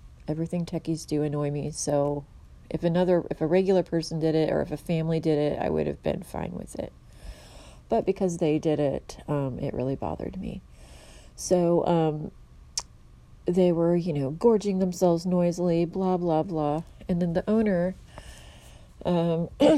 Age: 30-49